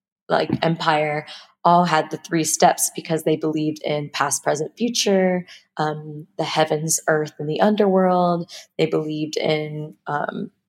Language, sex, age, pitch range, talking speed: English, female, 20-39, 155-180 Hz, 140 wpm